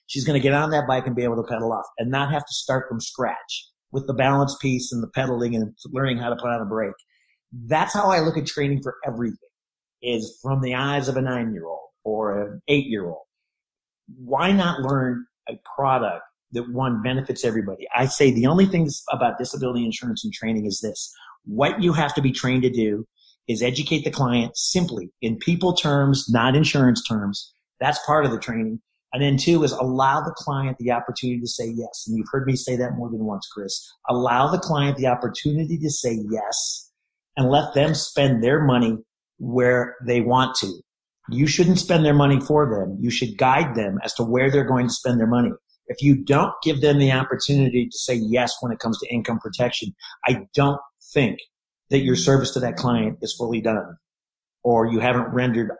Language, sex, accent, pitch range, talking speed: English, male, American, 115-140 Hz, 205 wpm